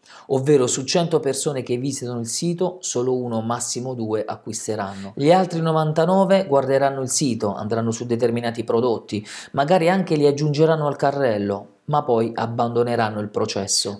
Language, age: Italian, 40-59